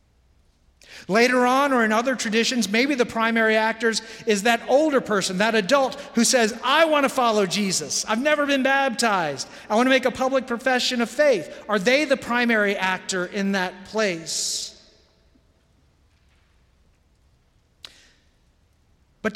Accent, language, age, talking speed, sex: American, English, 40-59, 140 wpm, male